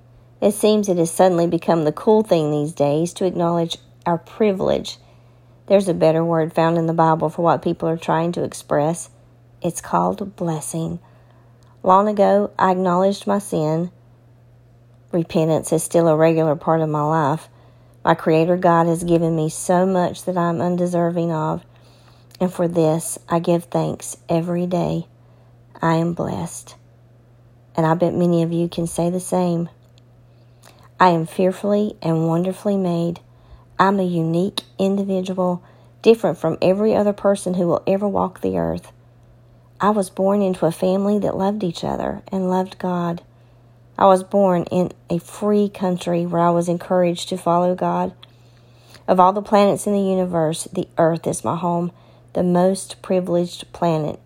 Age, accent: 40-59, American